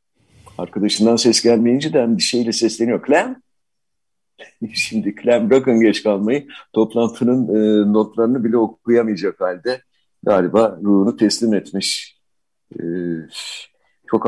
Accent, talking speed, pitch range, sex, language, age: native, 95 wpm, 100-125 Hz, male, Turkish, 60-79